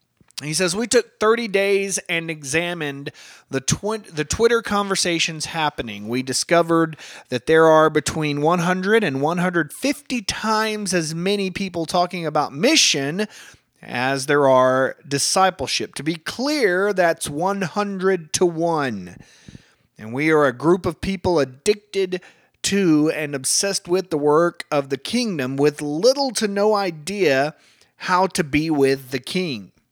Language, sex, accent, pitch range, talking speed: English, male, American, 150-195 Hz, 135 wpm